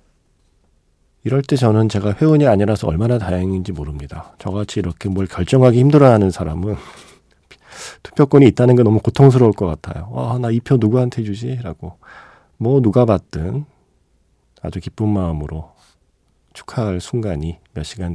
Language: Korean